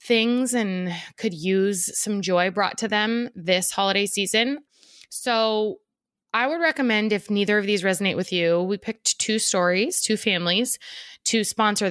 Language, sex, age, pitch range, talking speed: English, female, 20-39, 185-235 Hz, 155 wpm